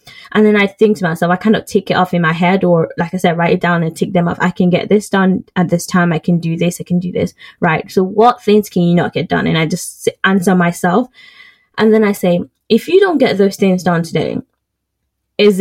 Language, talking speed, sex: English, 260 wpm, female